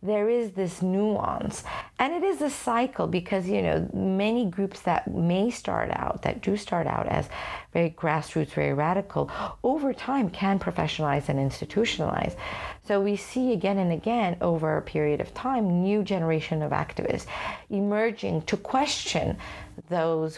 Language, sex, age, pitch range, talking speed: English, female, 50-69, 160-210 Hz, 155 wpm